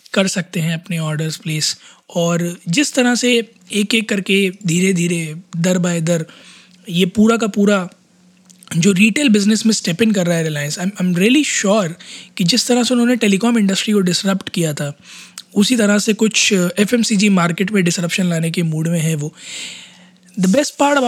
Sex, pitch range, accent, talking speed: male, 170-205 Hz, native, 190 wpm